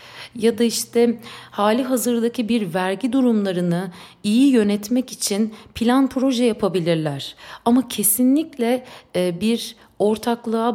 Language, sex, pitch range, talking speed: Turkish, female, 165-235 Hz, 100 wpm